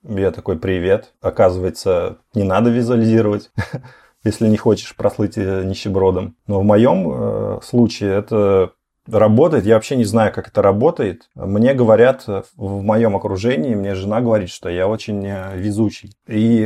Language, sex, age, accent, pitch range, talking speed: Russian, male, 30-49, native, 100-115 Hz, 135 wpm